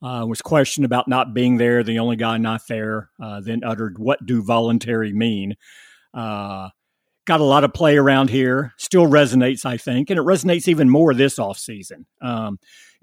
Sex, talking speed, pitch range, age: male, 185 wpm, 115-140 Hz, 50-69